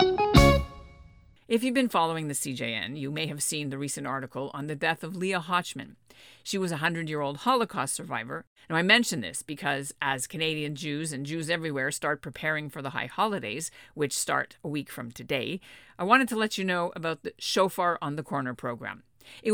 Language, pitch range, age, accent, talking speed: English, 135-180 Hz, 50-69, American, 190 wpm